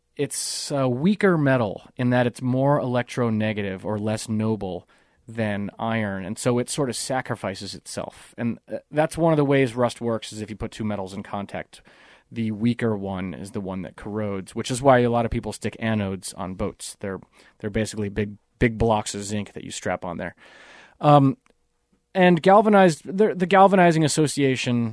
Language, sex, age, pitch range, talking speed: English, male, 30-49, 105-135 Hz, 180 wpm